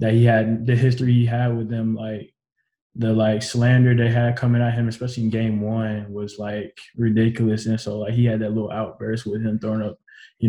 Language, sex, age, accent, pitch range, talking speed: English, male, 20-39, American, 110-120 Hz, 215 wpm